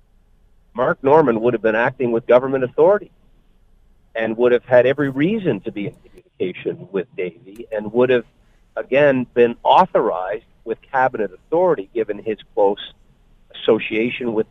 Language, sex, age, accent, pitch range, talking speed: English, male, 50-69, American, 110-145 Hz, 145 wpm